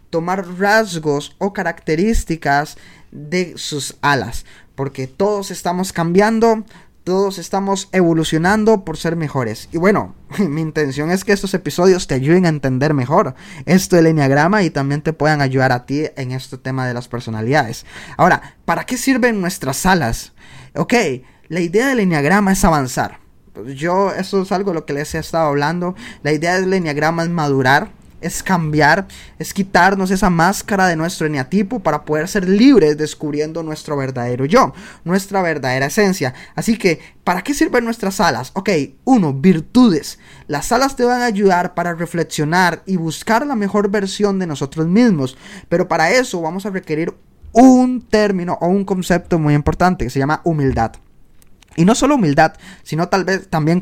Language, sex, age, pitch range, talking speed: Spanish, male, 20-39, 150-195 Hz, 165 wpm